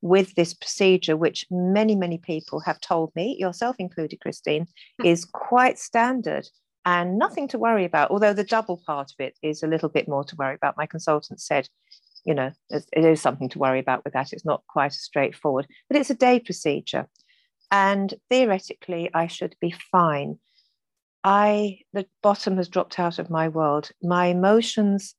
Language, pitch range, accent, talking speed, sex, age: English, 160-200 Hz, British, 180 wpm, female, 40-59